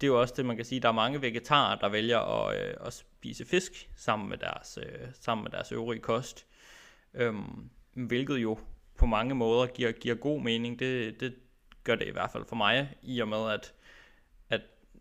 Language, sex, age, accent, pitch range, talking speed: Danish, male, 20-39, native, 110-125 Hz, 210 wpm